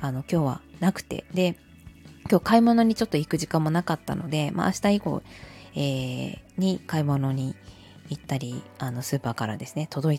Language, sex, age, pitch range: Japanese, female, 20-39, 140-190 Hz